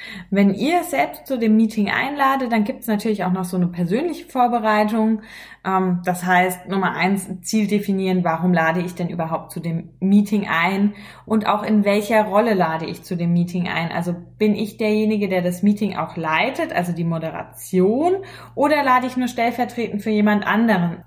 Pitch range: 180-215 Hz